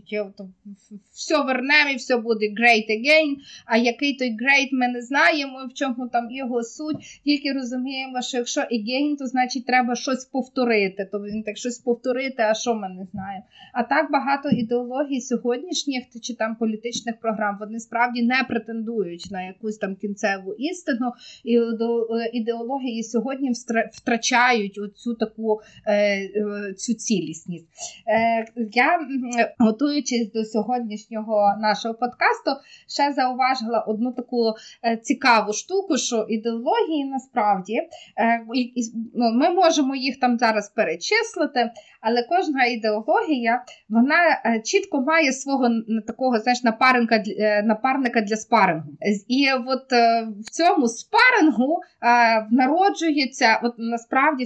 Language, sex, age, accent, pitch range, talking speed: Ukrainian, female, 20-39, native, 220-265 Hz, 115 wpm